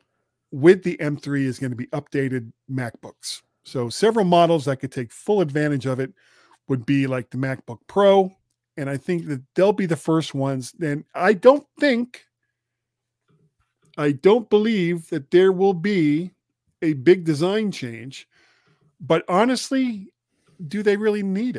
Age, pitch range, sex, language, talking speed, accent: 40-59, 130-185 Hz, male, English, 155 wpm, American